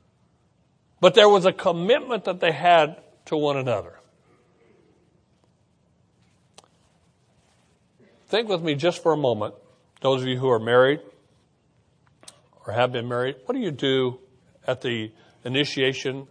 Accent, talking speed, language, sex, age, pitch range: American, 130 wpm, English, male, 40-59, 125-175 Hz